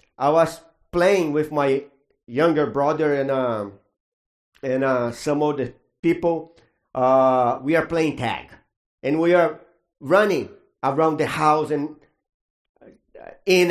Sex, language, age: male, English, 50-69